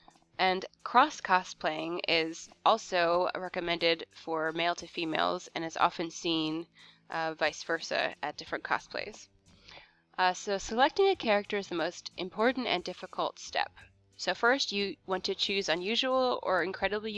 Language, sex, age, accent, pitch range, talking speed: English, female, 20-39, American, 165-195 Hz, 140 wpm